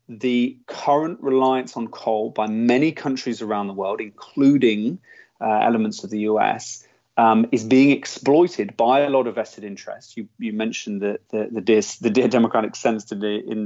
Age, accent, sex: 30-49, British, male